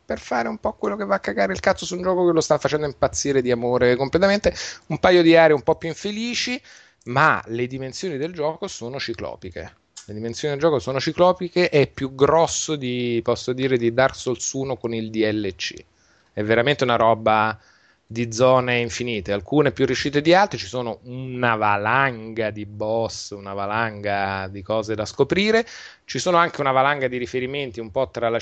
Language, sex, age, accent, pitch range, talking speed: Italian, male, 30-49, native, 105-135 Hz, 195 wpm